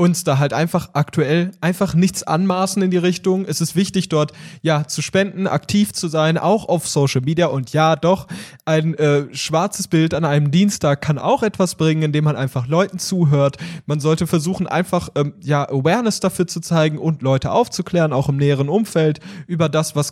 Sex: male